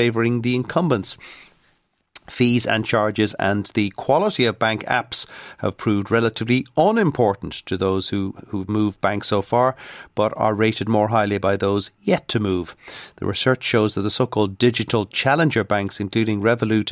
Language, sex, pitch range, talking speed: English, male, 105-130 Hz, 160 wpm